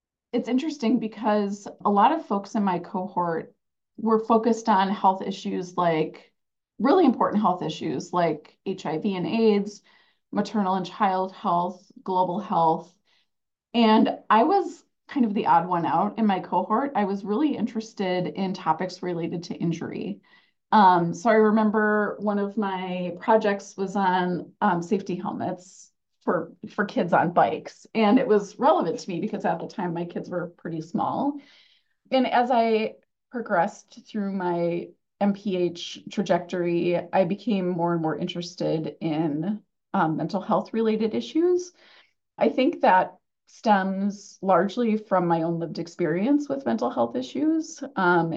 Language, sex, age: English, female, 30-49